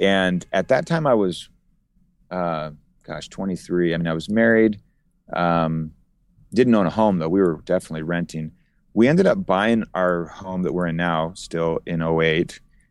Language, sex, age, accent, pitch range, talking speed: English, male, 30-49, American, 85-110 Hz, 170 wpm